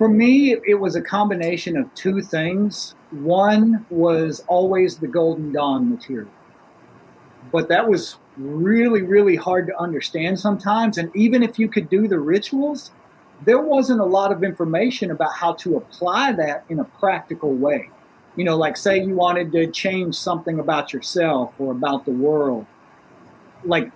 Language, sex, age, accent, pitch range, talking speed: Italian, male, 40-59, American, 160-210 Hz, 160 wpm